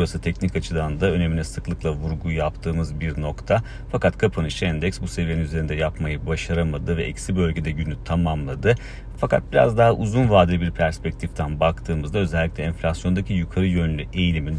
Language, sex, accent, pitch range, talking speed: Turkish, male, native, 80-95 Hz, 150 wpm